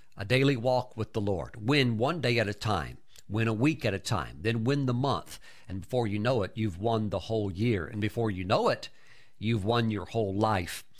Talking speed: 230 wpm